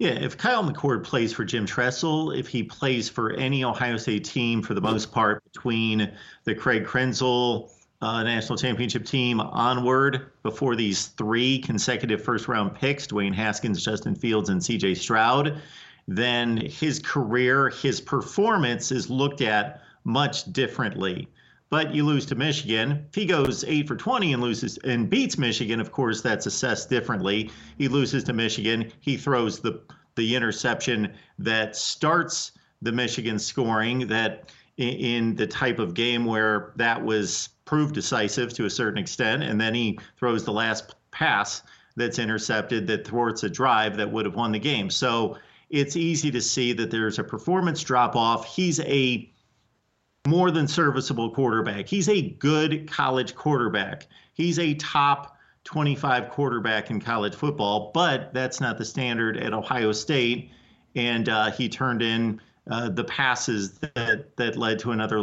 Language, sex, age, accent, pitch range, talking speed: English, male, 40-59, American, 110-140 Hz, 160 wpm